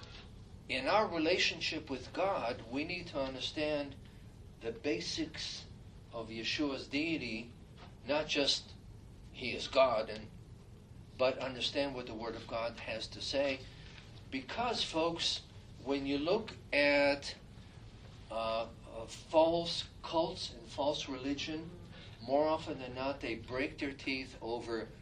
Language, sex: English, male